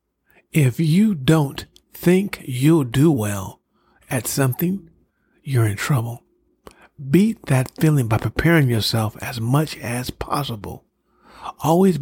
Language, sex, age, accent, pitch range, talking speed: English, male, 50-69, American, 120-165 Hz, 115 wpm